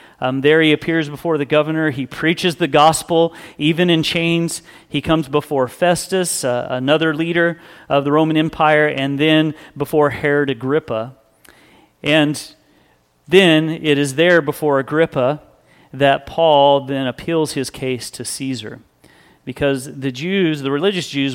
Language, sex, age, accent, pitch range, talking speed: English, male, 40-59, American, 125-155 Hz, 145 wpm